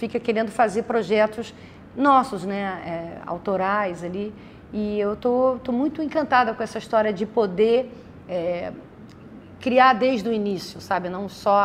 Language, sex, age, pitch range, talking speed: English, female, 40-59, 195-245 Hz, 140 wpm